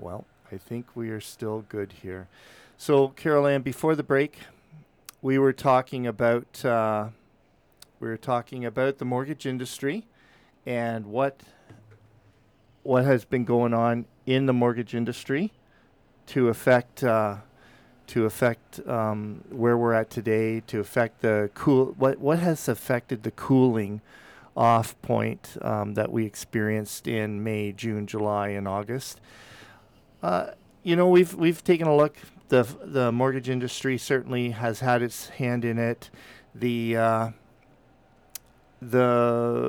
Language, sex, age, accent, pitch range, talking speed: English, male, 40-59, American, 110-130 Hz, 140 wpm